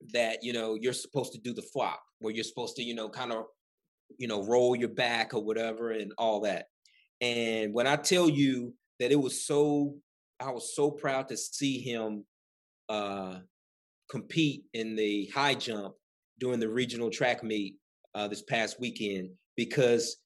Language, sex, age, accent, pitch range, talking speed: English, male, 30-49, American, 115-150 Hz, 175 wpm